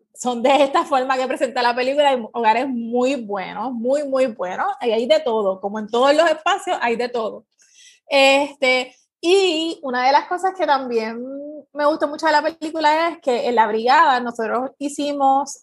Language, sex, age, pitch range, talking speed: Spanish, female, 20-39, 245-300 Hz, 185 wpm